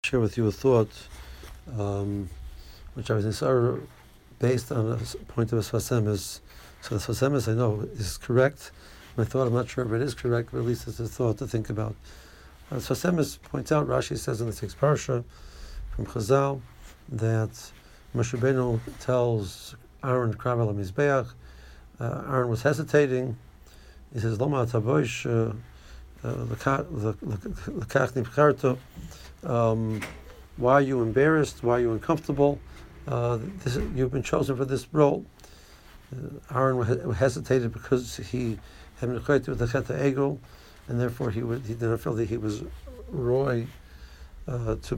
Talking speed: 135 wpm